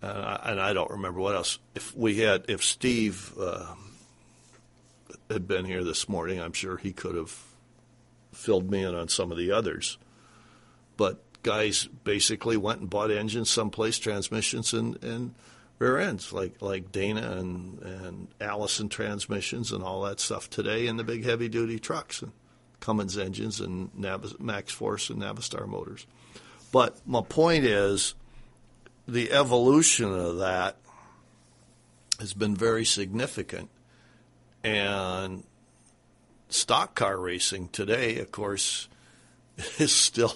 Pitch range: 95-120 Hz